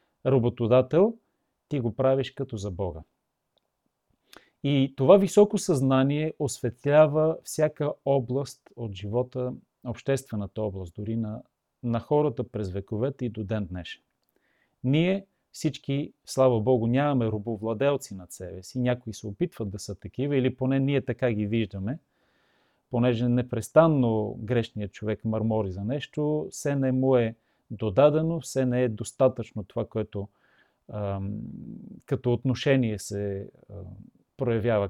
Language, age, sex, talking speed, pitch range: Bulgarian, 40-59, male, 120 wpm, 110-140 Hz